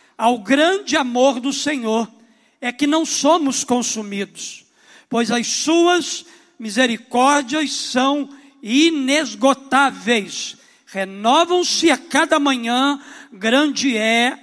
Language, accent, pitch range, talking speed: Portuguese, Brazilian, 255-310 Hz, 90 wpm